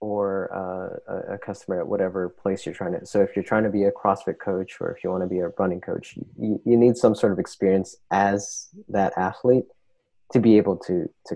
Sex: male